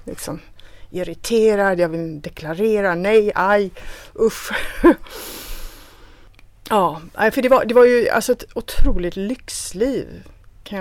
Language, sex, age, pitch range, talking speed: Swedish, female, 30-49, 165-210 Hz, 110 wpm